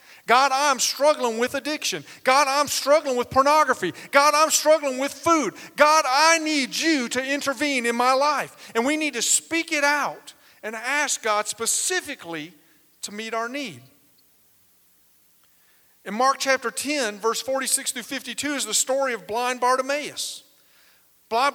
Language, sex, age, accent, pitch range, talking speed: English, male, 40-59, American, 225-290 Hz, 150 wpm